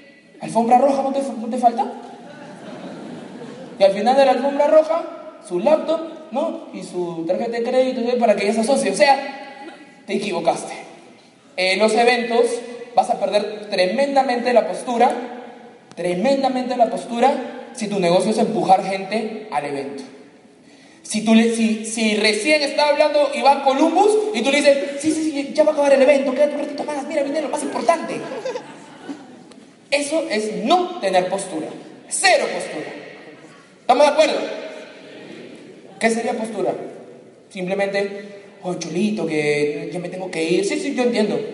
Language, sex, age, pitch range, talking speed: Spanish, male, 20-39, 195-280 Hz, 160 wpm